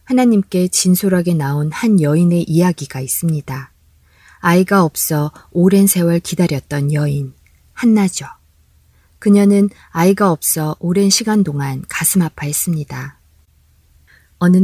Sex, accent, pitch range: female, native, 145-195 Hz